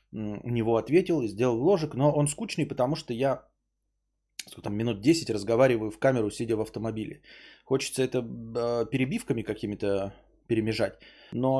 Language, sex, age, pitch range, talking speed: Bulgarian, male, 20-39, 105-130 Hz, 150 wpm